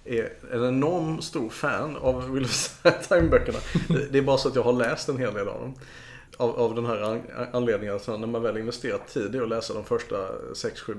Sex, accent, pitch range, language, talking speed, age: male, Norwegian, 110-140 Hz, Swedish, 205 wpm, 30-49